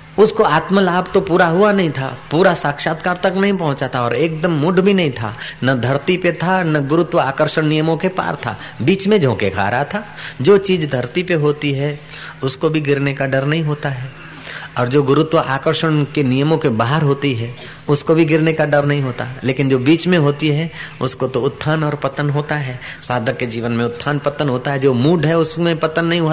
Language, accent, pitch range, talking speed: Hindi, native, 130-170 Hz, 125 wpm